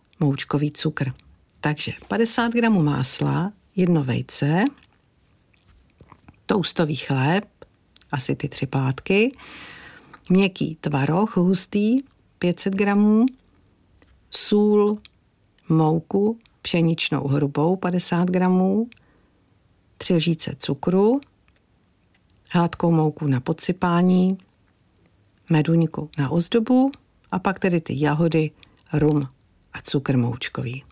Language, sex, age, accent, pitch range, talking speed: Czech, female, 50-69, native, 140-185 Hz, 85 wpm